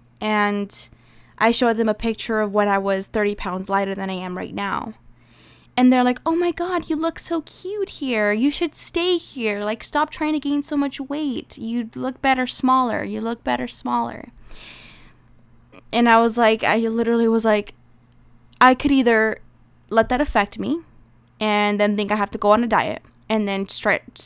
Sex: female